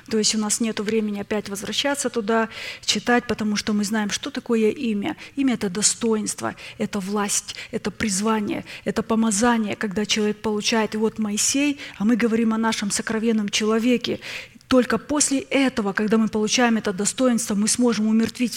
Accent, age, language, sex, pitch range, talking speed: native, 20-39, Russian, female, 215-235 Hz, 160 wpm